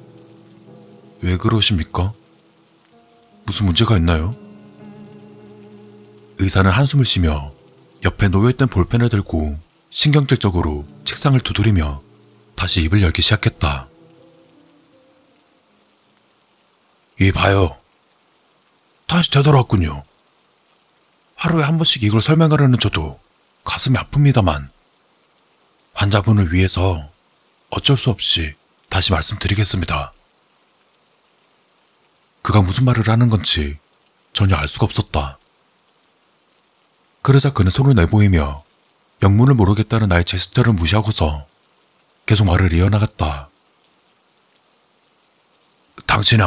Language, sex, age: Korean, male, 40-59